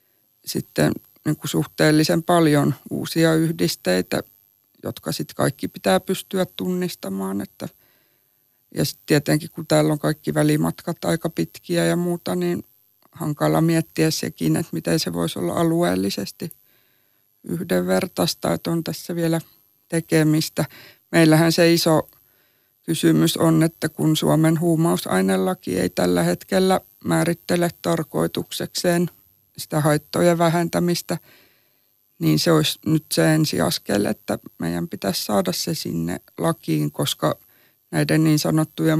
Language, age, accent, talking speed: Finnish, 50-69, native, 120 wpm